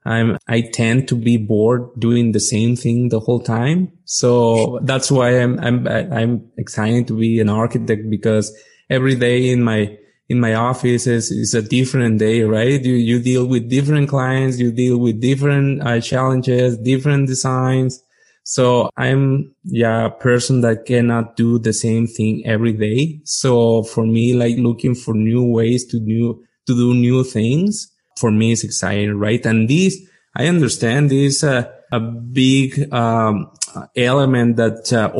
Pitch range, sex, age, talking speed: 115-130 Hz, male, 20-39, 165 wpm